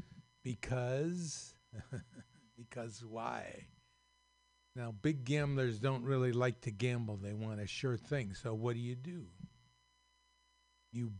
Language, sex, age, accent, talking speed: English, male, 50-69, American, 120 wpm